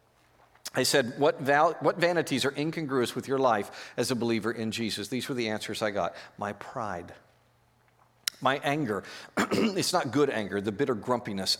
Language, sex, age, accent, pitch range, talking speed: English, male, 50-69, American, 115-155 Hz, 165 wpm